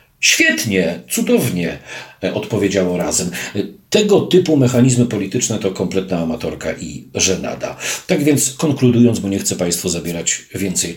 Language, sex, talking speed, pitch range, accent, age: Polish, male, 120 wpm, 95-125 Hz, native, 50-69